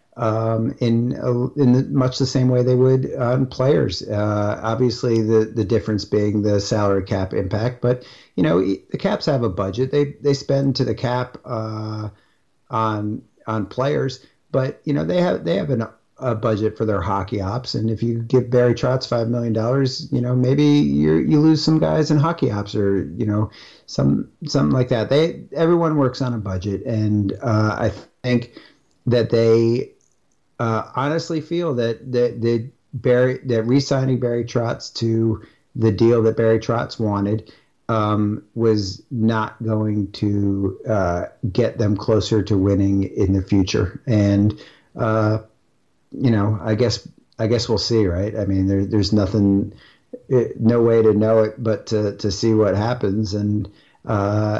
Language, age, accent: English, 50-69, American